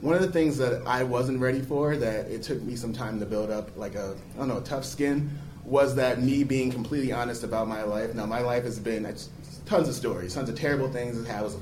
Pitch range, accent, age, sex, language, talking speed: 115-140 Hz, American, 30-49, male, English, 260 wpm